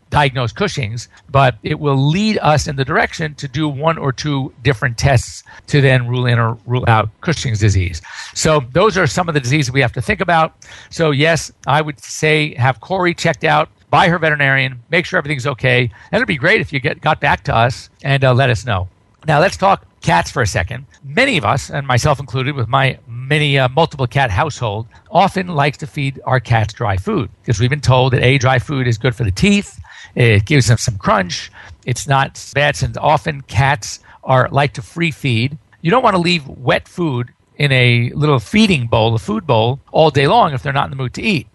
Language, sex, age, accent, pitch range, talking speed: English, male, 50-69, American, 120-150 Hz, 220 wpm